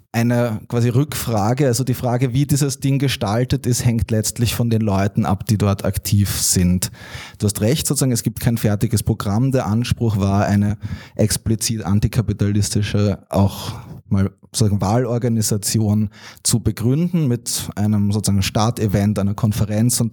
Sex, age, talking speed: male, 20-39, 145 wpm